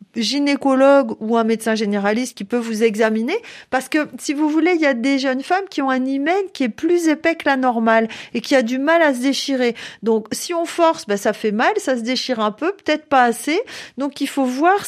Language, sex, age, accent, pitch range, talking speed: French, female, 40-59, French, 230-290 Hz, 240 wpm